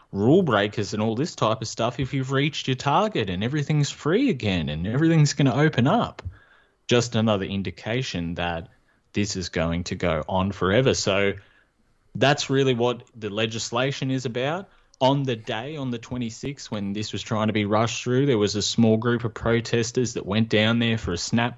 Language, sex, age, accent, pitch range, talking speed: English, male, 20-39, Australian, 100-120 Hz, 195 wpm